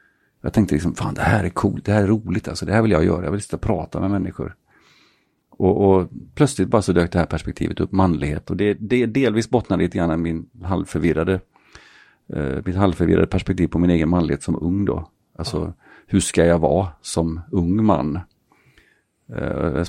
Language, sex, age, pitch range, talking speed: Swedish, male, 40-59, 80-95 Hz, 200 wpm